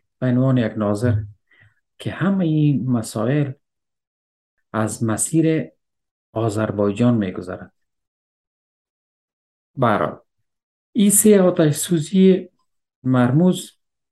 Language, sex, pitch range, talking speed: Persian, male, 110-150 Hz, 75 wpm